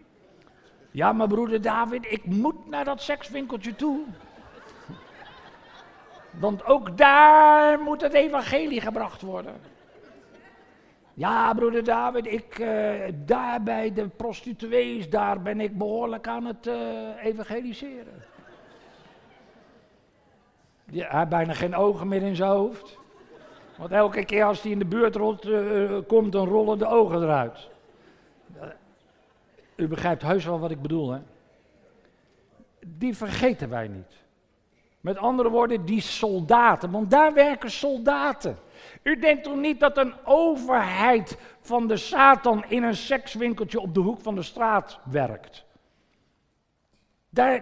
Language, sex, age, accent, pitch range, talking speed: Dutch, male, 60-79, Dutch, 200-275 Hz, 125 wpm